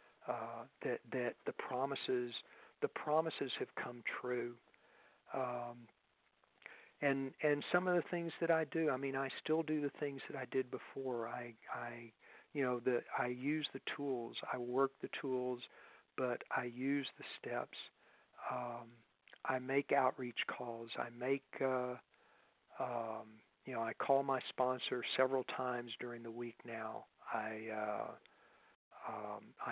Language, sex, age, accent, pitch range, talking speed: English, male, 50-69, American, 120-135 Hz, 145 wpm